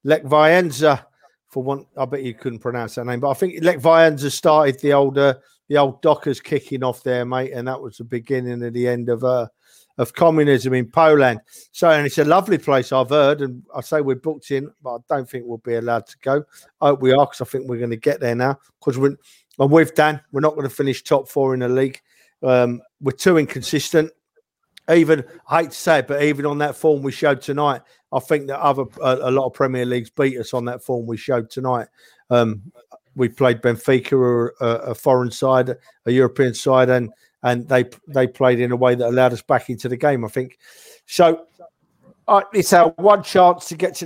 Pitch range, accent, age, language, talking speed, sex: 125-155 Hz, British, 50-69, English, 225 wpm, male